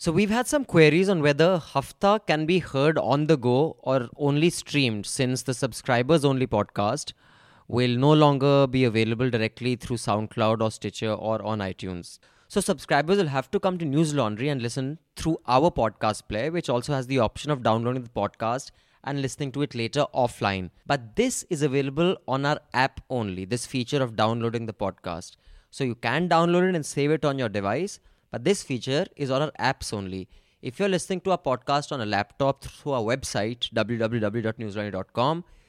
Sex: male